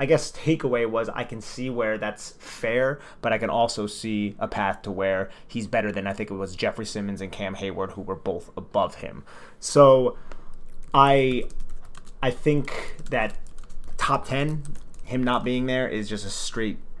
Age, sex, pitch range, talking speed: 30-49, male, 105-130 Hz, 180 wpm